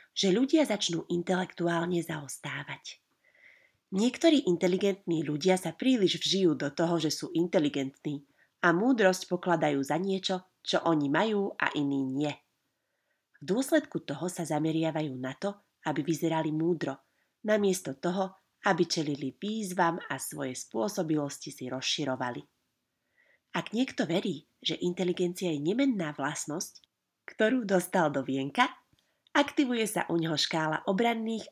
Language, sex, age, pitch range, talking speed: Slovak, female, 30-49, 150-205 Hz, 125 wpm